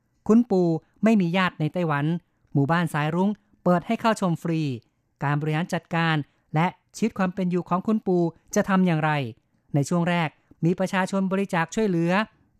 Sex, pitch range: female, 160-190 Hz